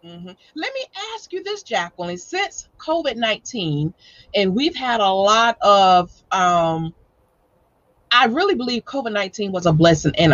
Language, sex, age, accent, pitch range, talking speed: English, female, 30-49, American, 180-230 Hz, 145 wpm